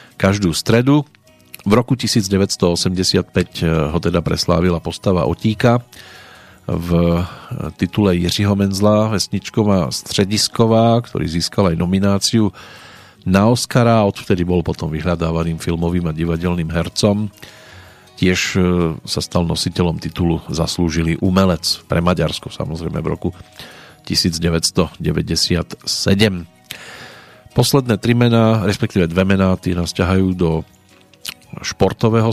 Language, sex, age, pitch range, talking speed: Slovak, male, 40-59, 85-105 Hz, 100 wpm